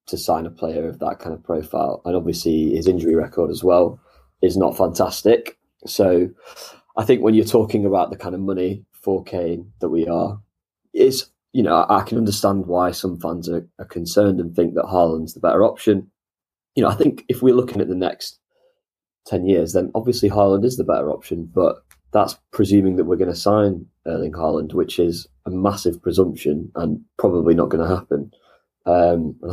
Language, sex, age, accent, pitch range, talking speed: English, male, 20-39, British, 85-105 Hz, 195 wpm